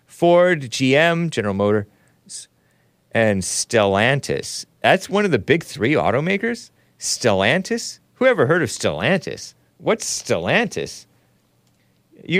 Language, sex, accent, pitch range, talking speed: English, male, American, 110-165 Hz, 105 wpm